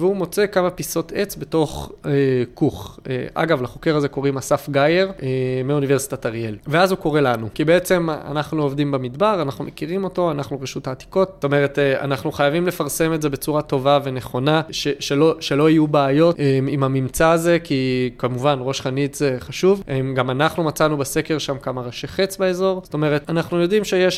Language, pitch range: Hebrew, 135-170 Hz